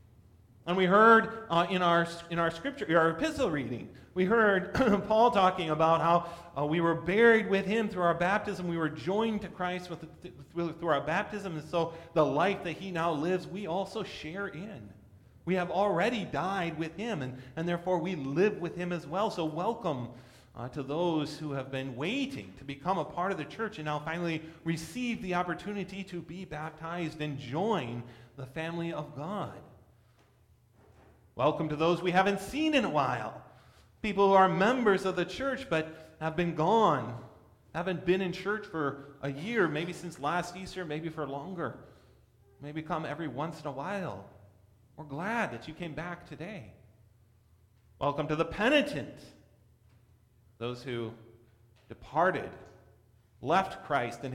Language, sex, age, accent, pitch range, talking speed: English, male, 40-59, American, 130-185 Hz, 170 wpm